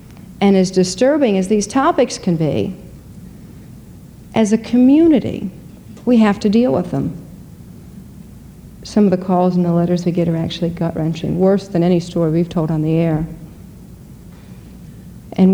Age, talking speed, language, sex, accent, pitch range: 50-69, 150 wpm, English, female, American, 170-200 Hz